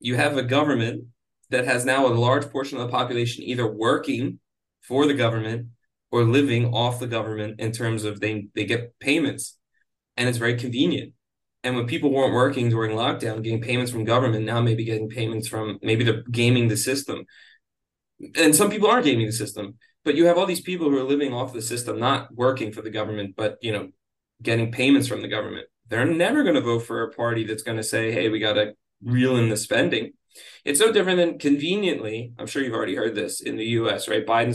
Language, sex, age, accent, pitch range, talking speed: English, male, 20-39, American, 115-145 Hz, 215 wpm